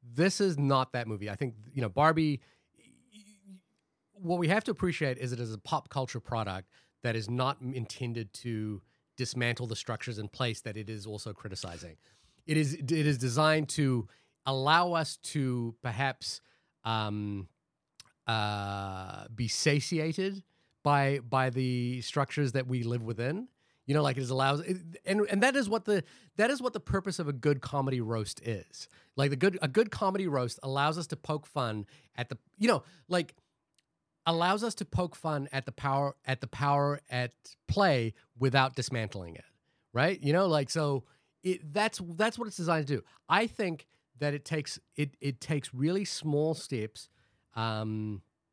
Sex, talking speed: male, 170 wpm